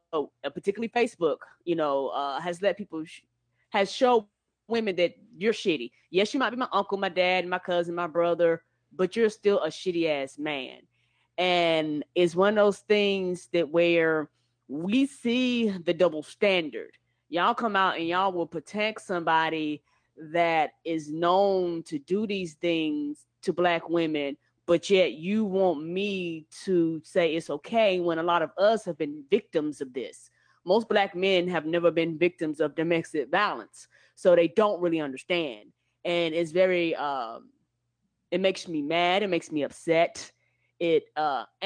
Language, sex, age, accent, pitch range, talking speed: English, female, 20-39, American, 160-195 Hz, 165 wpm